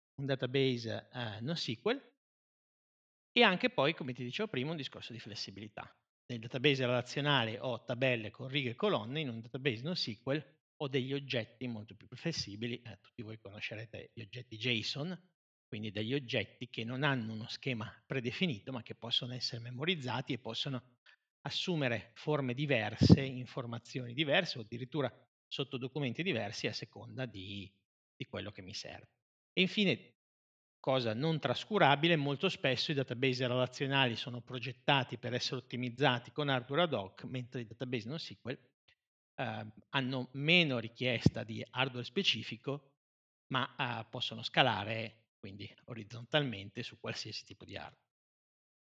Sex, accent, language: male, native, Italian